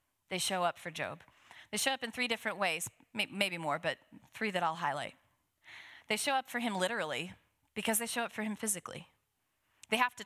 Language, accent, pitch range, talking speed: English, American, 185-240 Hz, 205 wpm